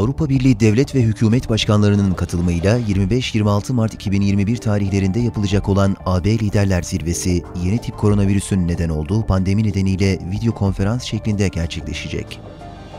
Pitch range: 90-115 Hz